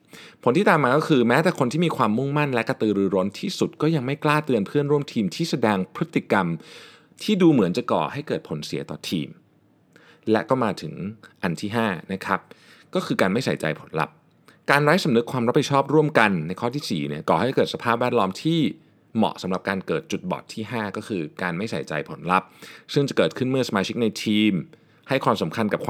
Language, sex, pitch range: Thai, male, 105-155 Hz